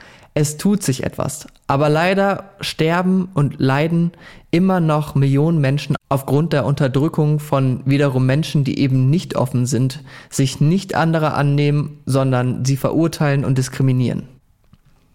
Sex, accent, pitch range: male, German, 135-160 Hz